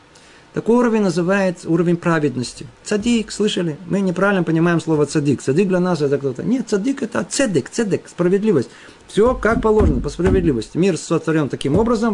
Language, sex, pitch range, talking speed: Russian, male, 145-190 Hz, 160 wpm